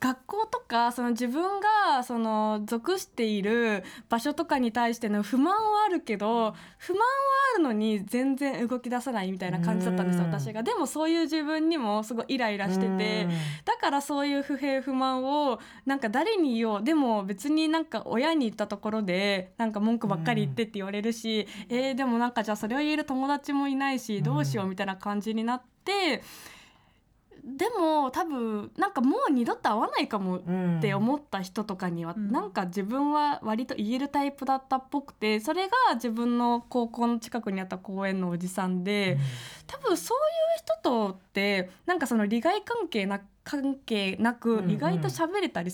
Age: 20-39